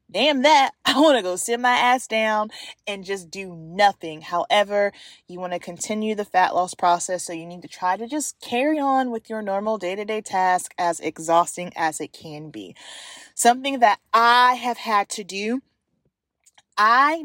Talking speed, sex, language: 175 wpm, female, English